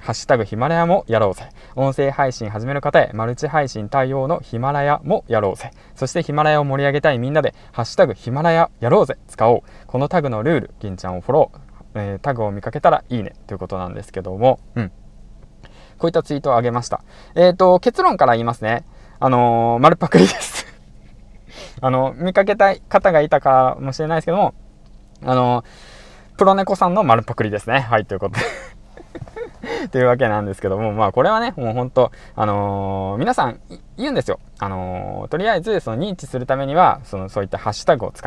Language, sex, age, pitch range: Japanese, male, 20-39, 105-150 Hz